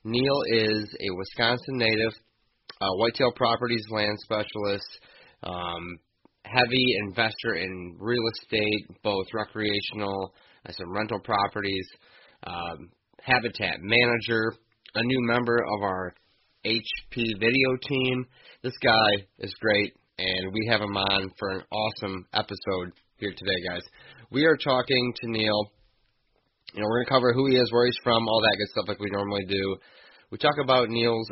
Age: 20-39